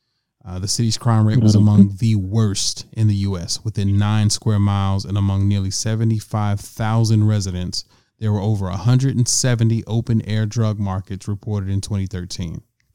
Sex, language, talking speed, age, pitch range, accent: male, English, 145 wpm, 30-49, 105-120 Hz, American